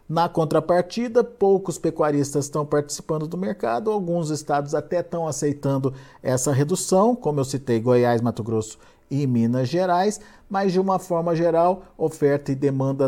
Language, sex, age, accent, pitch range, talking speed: Portuguese, male, 50-69, Brazilian, 125-170 Hz, 145 wpm